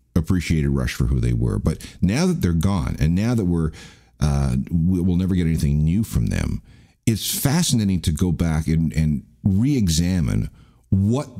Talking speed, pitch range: 175 wpm, 80-110 Hz